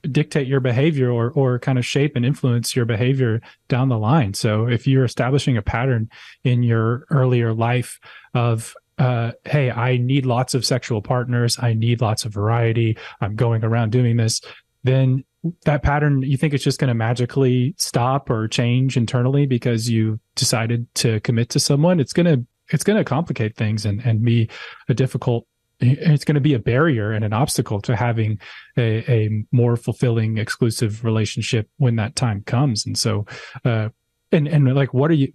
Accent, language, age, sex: American, English, 20-39, male